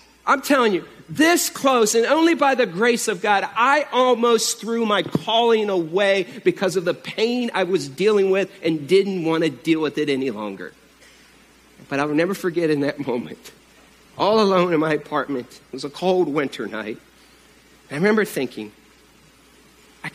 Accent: American